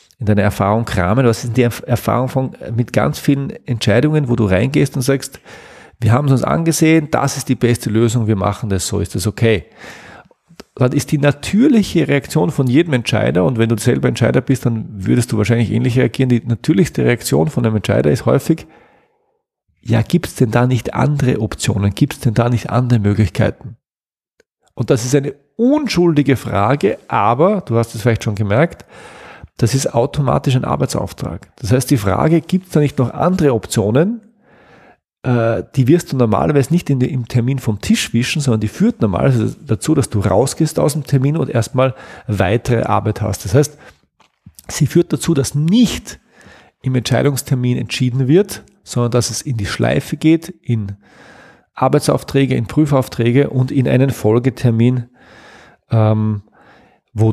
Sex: male